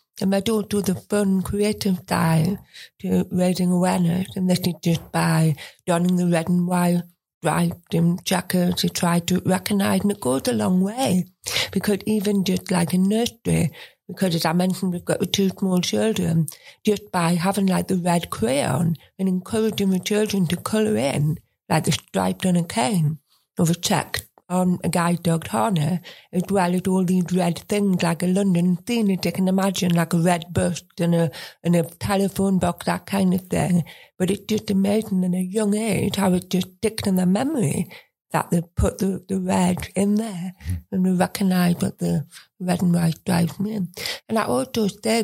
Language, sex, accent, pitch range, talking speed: English, female, British, 175-200 Hz, 190 wpm